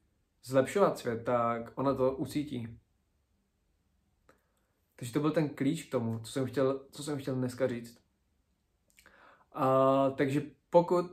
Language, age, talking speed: Czech, 20-39, 130 wpm